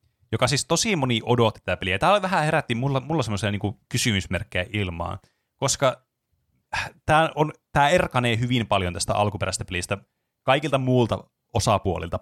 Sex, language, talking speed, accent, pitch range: male, Finnish, 135 wpm, native, 95-125 Hz